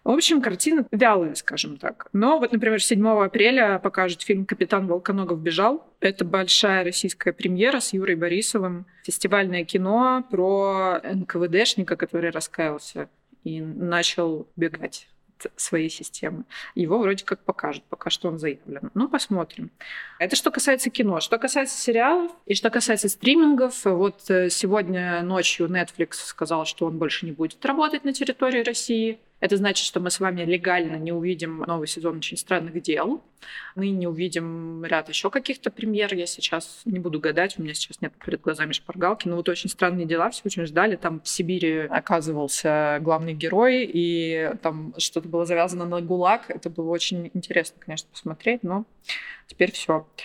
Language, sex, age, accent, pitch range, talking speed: Russian, female, 20-39, native, 170-215 Hz, 160 wpm